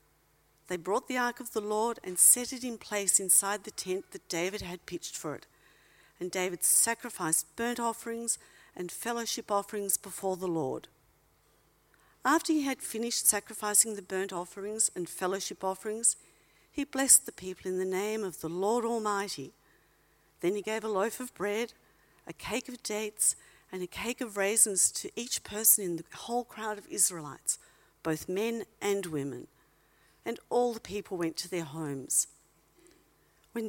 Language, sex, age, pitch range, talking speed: English, female, 50-69, 185-230 Hz, 165 wpm